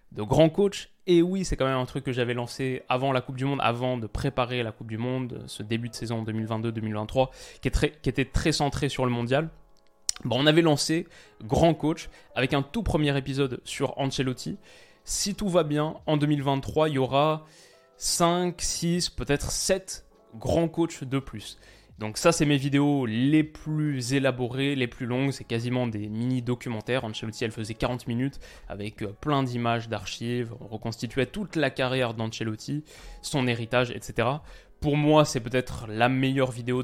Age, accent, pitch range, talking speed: 20-39, French, 120-150 Hz, 180 wpm